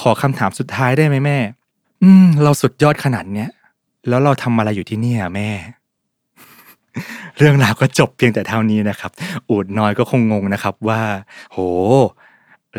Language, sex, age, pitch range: Thai, male, 20-39, 105-135 Hz